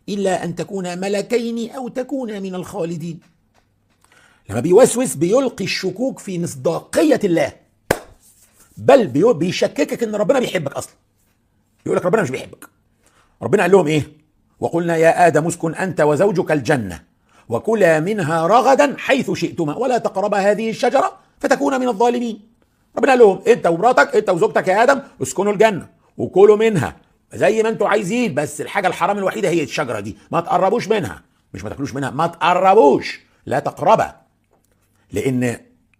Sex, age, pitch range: male, 50-69, 130-210 Hz